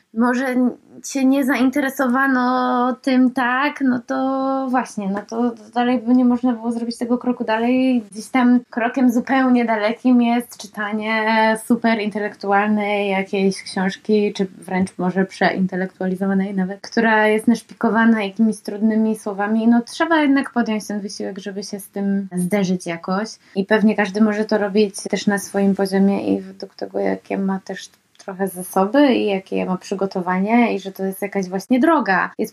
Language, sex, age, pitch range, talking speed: Polish, female, 20-39, 195-235 Hz, 155 wpm